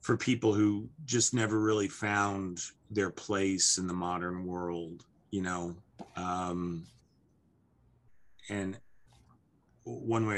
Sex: male